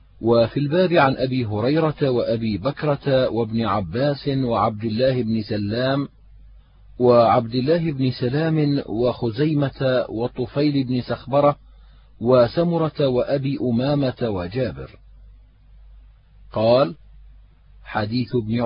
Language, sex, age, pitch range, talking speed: Arabic, male, 40-59, 120-150 Hz, 90 wpm